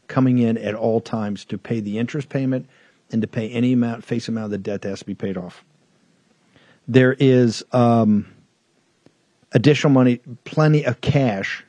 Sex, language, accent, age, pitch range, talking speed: male, English, American, 50-69, 120-155 Hz, 175 wpm